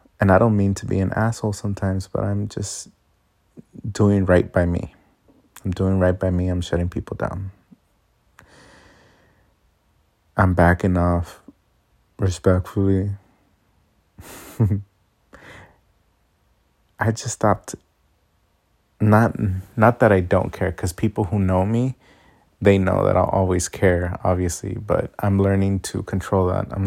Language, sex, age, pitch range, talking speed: English, male, 30-49, 95-105 Hz, 125 wpm